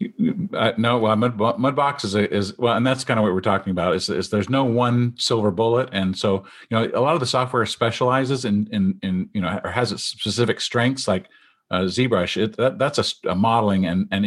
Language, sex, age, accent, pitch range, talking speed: English, male, 50-69, American, 100-125 Hz, 225 wpm